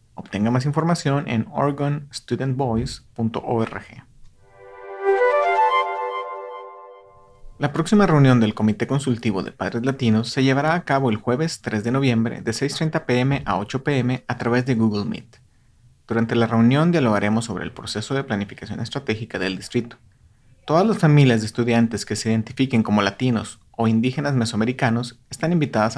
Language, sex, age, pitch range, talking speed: English, male, 30-49, 110-140 Hz, 140 wpm